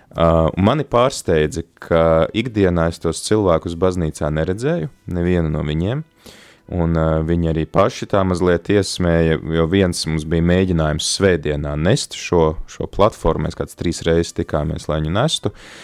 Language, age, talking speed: English, 20-39, 140 wpm